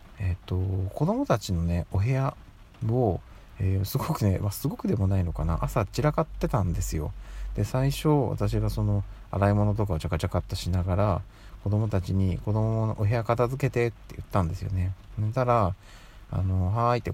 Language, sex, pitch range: Japanese, male, 90-110 Hz